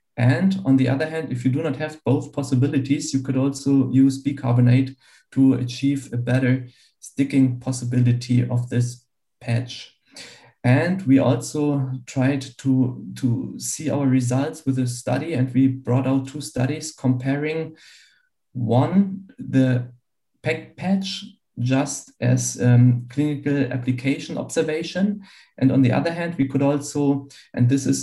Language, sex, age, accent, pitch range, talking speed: English, male, 50-69, German, 125-145 Hz, 140 wpm